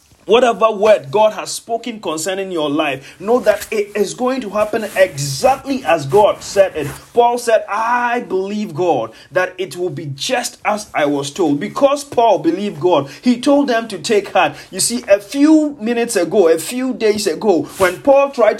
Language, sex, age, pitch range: English, male, 30-49, 180-250 Hz